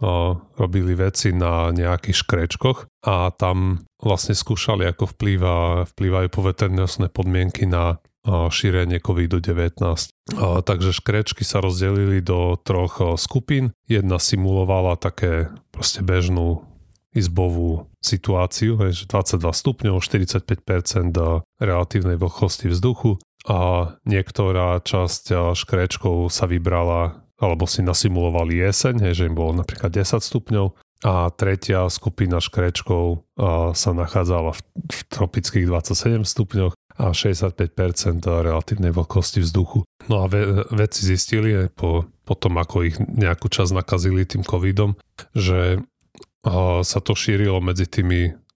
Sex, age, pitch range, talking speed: male, 30-49, 85-105 Hz, 105 wpm